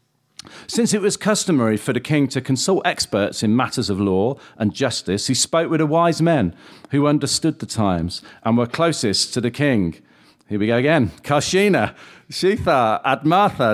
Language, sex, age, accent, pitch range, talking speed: English, male, 40-59, British, 110-170 Hz, 170 wpm